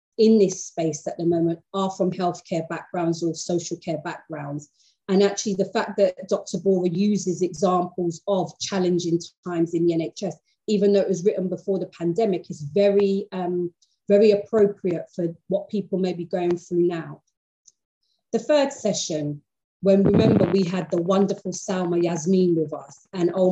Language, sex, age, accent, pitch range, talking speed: English, female, 30-49, British, 170-205 Hz, 165 wpm